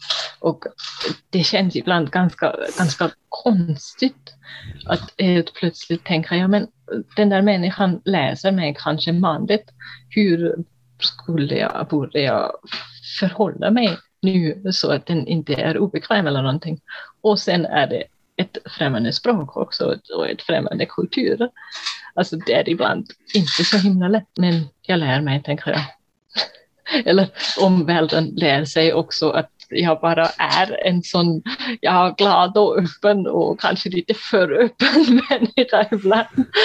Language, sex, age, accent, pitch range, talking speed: Swedish, female, 30-49, native, 170-240 Hz, 140 wpm